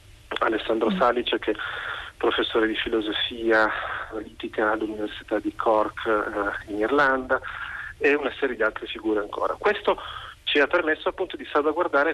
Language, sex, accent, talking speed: Italian, male, native, 140 wpm